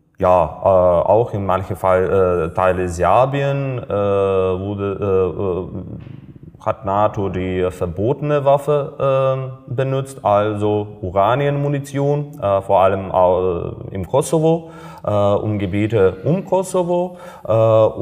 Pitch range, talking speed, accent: 95-130 Hz, 115 wpm, German